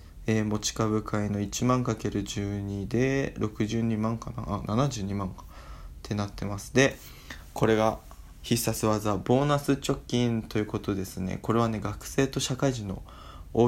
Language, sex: Japanese, male